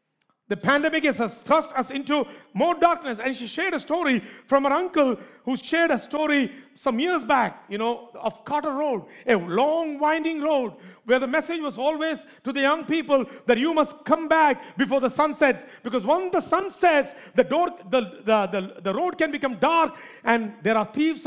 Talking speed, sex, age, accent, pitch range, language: 195 wpm, male, 50-69, Indian, 190-285 Hz, English